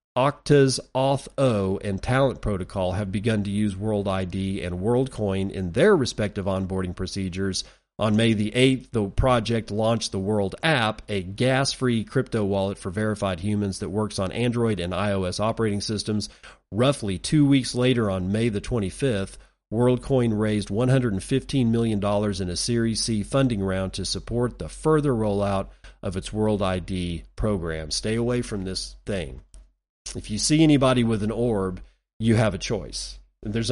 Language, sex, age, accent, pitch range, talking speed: English, male, 40-59, American, 95-120 Hz, 155 wpm